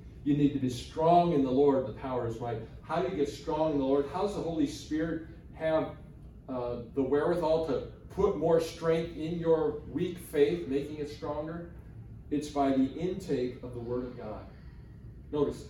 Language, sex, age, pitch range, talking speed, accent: English, male, 40-59, 125-160 Hz, 190 wpm, American